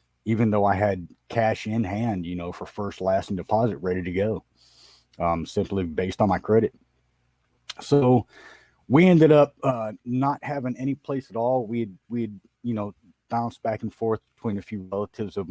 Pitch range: 95-115 Hz